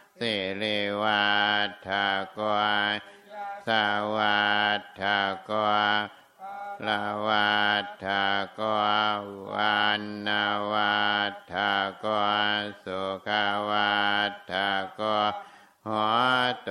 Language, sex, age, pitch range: Thai, male, 60-79, 100-105 Hz